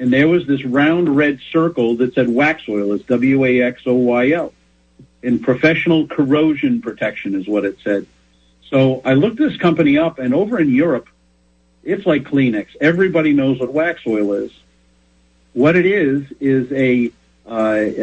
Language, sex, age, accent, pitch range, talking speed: English, male, 50-69, American, 105-140 Hz, 155 wpm